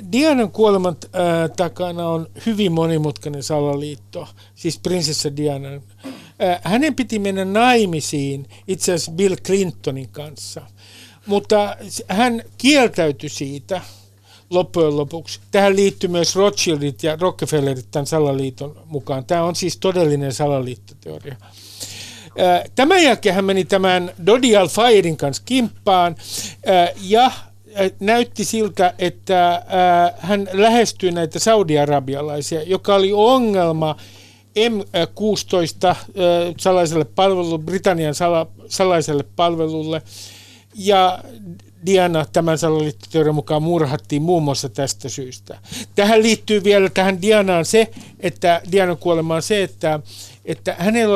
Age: 50-69